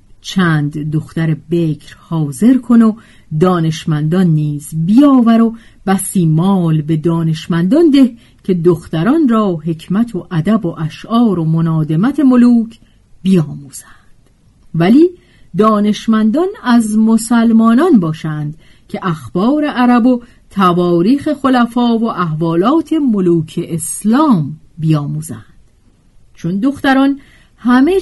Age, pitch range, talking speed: 40-59, 160-240 Hz, 100 wpm